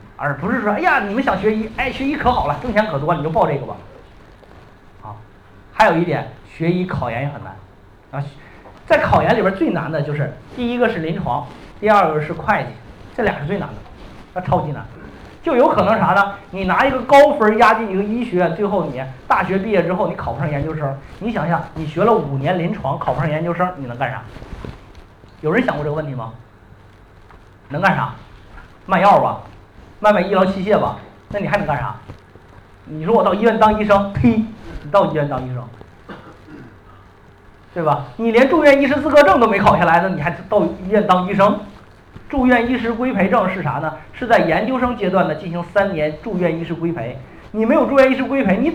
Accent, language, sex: native, Chinese, male